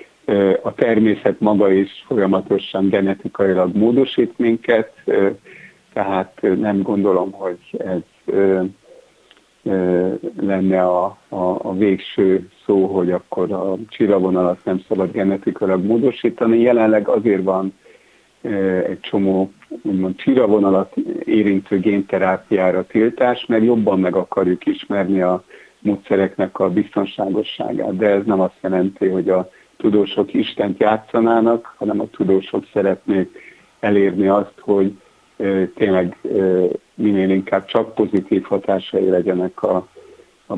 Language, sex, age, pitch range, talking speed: Hungarian, male, 60-79, 95-105 Hz, 105 wpm